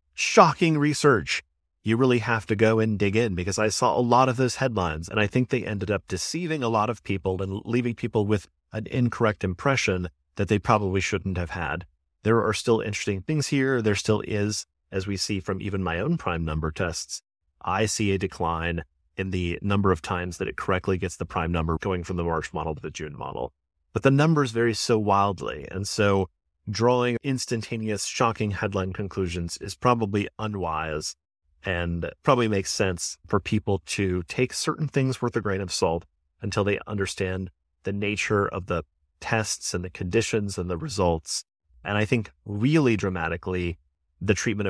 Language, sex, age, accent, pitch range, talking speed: English, male, 30-49, American, 90-115 Hz, 185 wpm